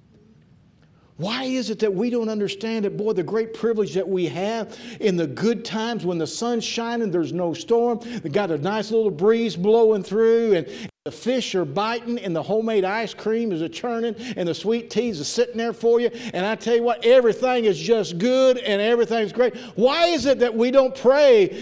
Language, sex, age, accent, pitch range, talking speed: English, male, 50-69, American, 135-225 Hz, 210 wpm